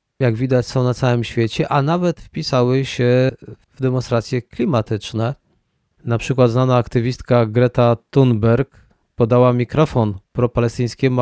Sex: male